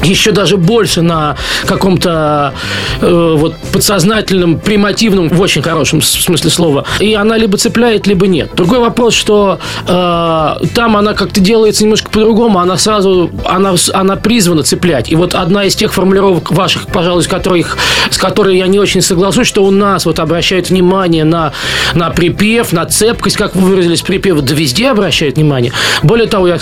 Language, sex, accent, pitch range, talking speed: Russian, male, native, 165-200 Hz, 160 wpm